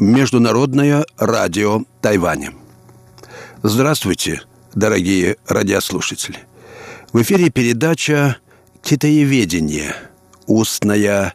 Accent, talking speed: native, 60 wpm